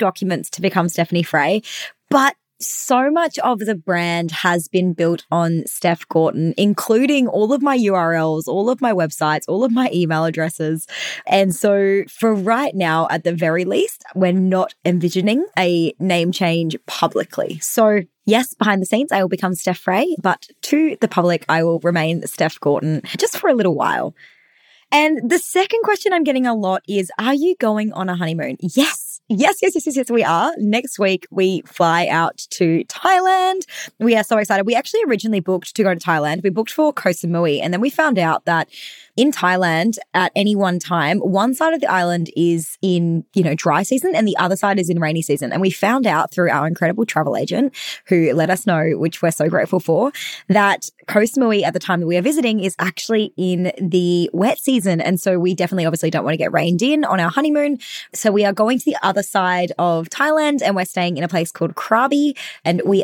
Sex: female